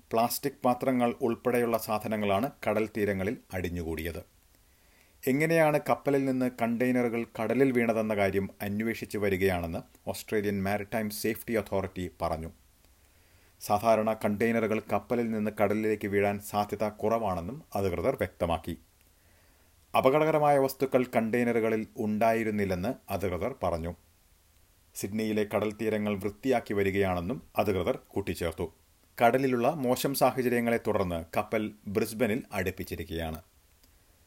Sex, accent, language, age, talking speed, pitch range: male, native, Malayalam, 30-49, 85 wpm, 90-115 Hz